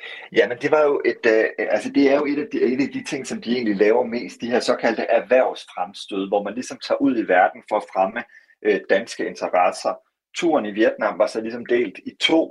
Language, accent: Danish, native